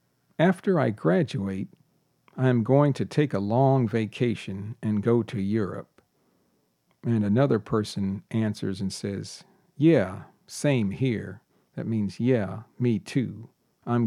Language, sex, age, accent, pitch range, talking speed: English, male, 50-69, American, 100-130 Hz, 125 wpm